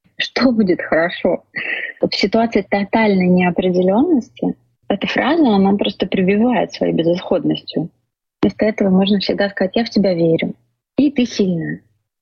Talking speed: 135 wpm